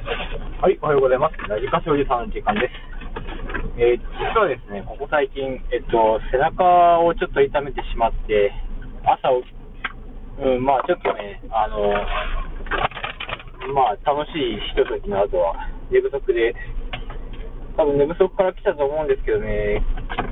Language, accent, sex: Japanese, native, male